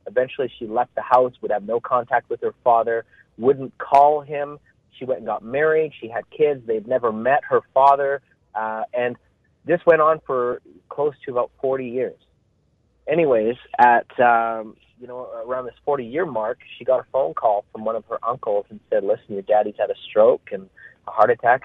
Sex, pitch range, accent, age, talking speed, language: male, 115-160 Hz, American, 30-49, 195 wpm, English